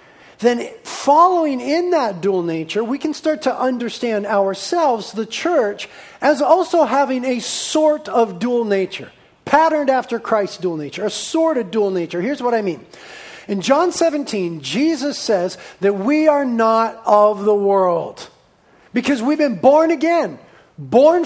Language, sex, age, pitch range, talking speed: English, male, 40-59, 215-310 Hz, 150 wpm